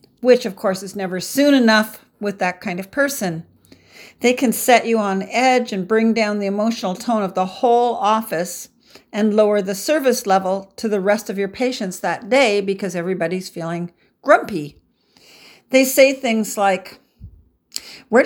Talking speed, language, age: 165 wpm, English, 50-69